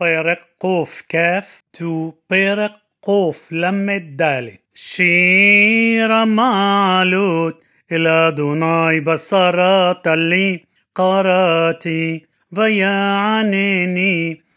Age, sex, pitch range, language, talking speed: 30-49, male, 165-190 Hz, Hebrew, 50 wpm